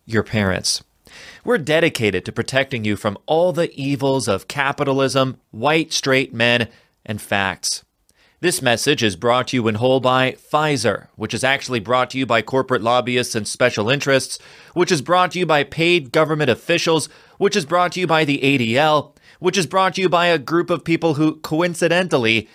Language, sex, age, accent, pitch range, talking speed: English, male, 30-49, American, 110-165 Hz, 185 wpm